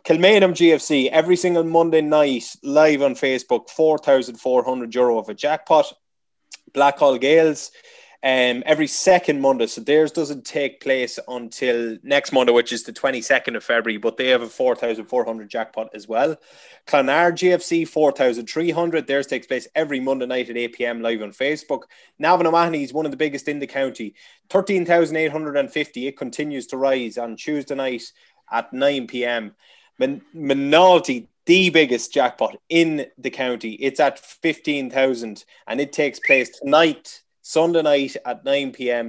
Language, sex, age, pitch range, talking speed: English, male, 20-39, 120-155 Hz, 150 wpm